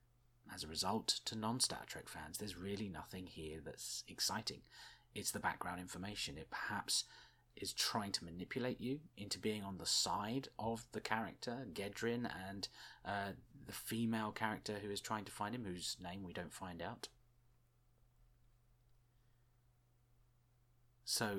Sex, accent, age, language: male, British, 30-49, English